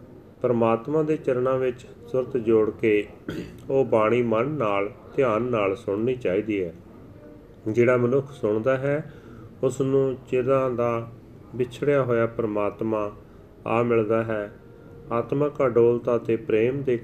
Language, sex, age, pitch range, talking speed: Punjabi, male, 40-59, 105-125 Hz, 125 wpm